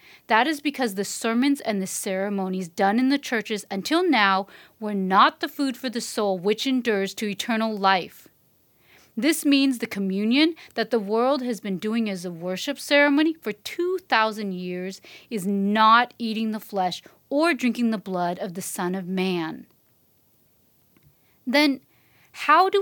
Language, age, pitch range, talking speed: English, 30-49, 195-265 Hz, 160 wpm